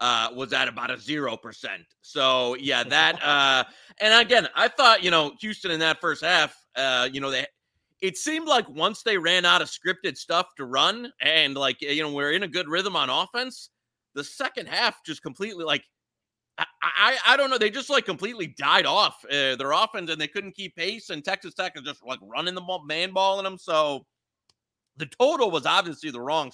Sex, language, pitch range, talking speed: male, English, 135-195 Hz, 210 wpm